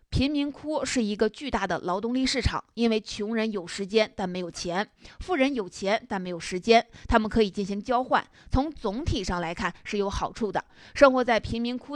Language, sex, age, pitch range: Chinese, female, 30-49, 195-250 Hz